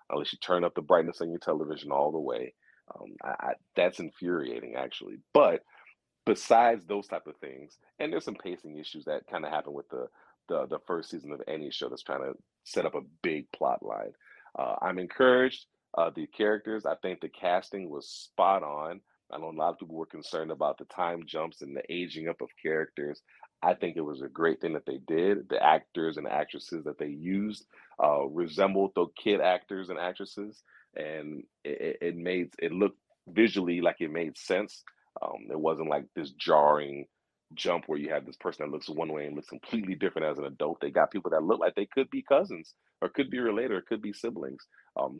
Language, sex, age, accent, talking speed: English, male, 40-59, American, 210 wpm